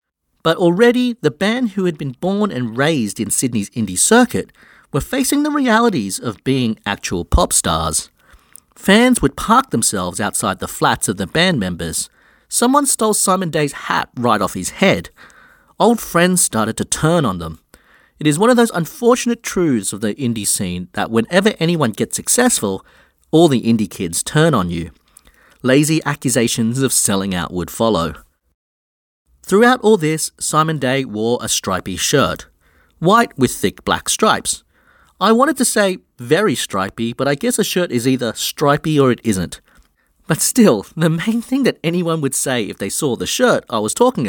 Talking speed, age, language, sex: 175 wpm, 40-59, English, male